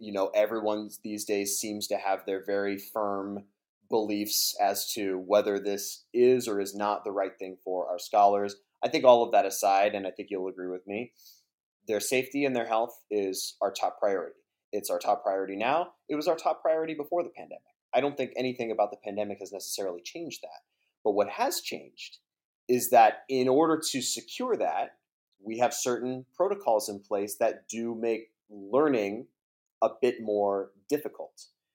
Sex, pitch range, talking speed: male, 100-125 Hz, 185 wpm